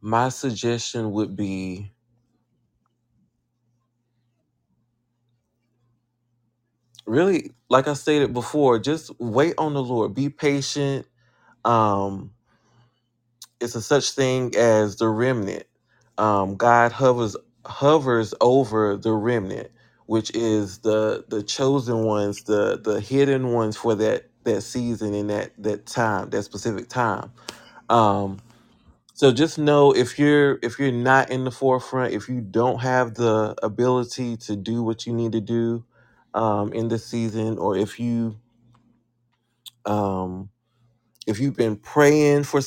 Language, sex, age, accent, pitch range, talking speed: English, male, 30-49, American, 110-130 Hz, 125 wpm